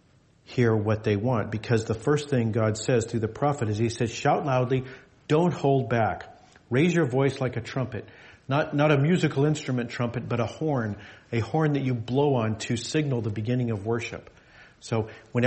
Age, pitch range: 40-59, 110-140 Hz